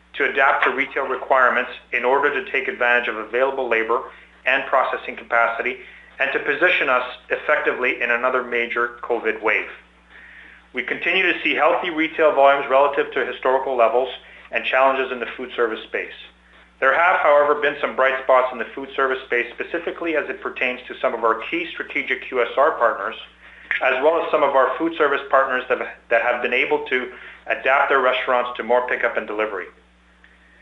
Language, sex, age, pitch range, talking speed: English, male, 40-59, 120-140 Hz, 180 wpm